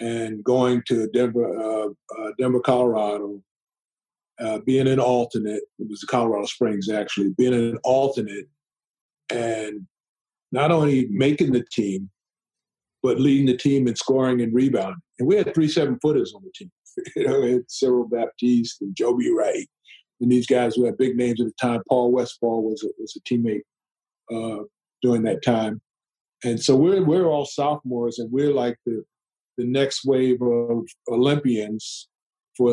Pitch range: 115-135 Hz